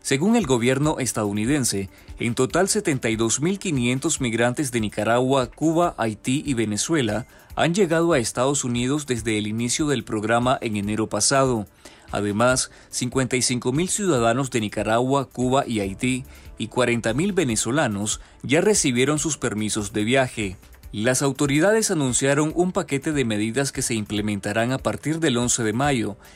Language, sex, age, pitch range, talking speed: Spanish, male, 30-49, 110-140 Hz, 135 wpm